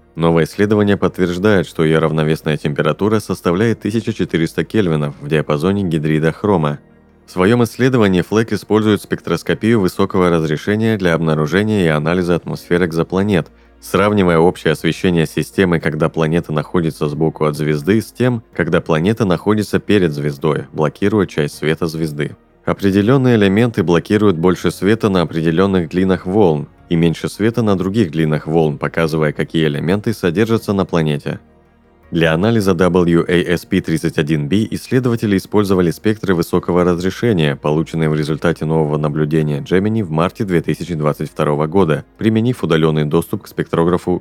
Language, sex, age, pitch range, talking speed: Russian, male, 30-49, 80-100 Hz, 130 wpm